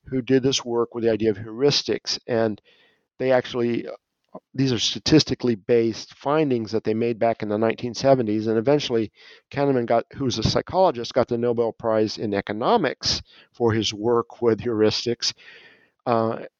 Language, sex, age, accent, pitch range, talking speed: English, male, 50-69, American, 115-140 Hz, 155 wpm